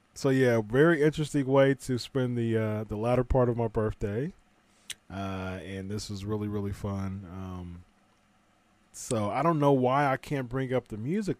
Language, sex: English, male